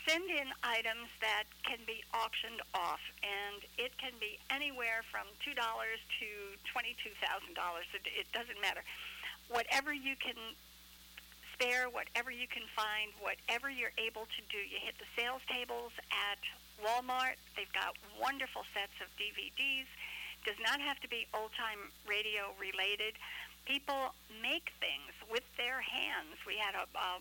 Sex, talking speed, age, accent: female, 140 wpm, 60-79, American